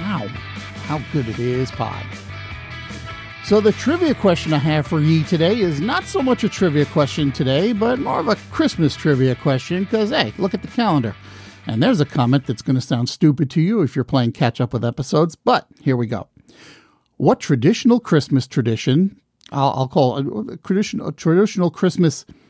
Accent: American